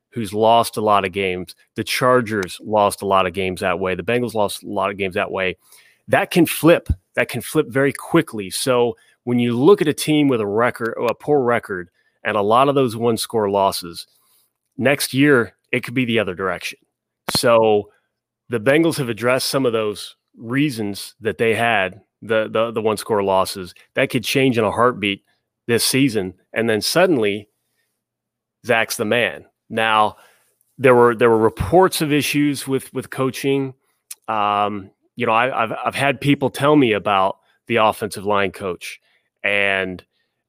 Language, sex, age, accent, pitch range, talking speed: English, male, 30-49, American, 105-135 Hz, 175 wpm